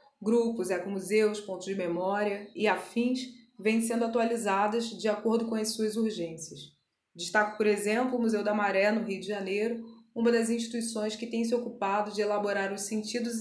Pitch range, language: 200-230 Hz, Portuguese